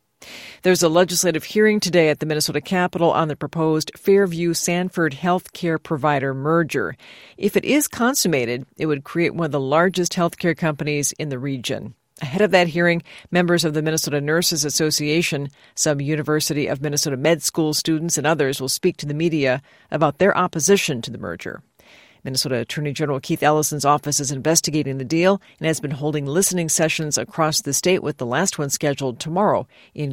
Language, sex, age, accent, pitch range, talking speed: English, female, 50-69, American, 145-175 Hz, 175 wpm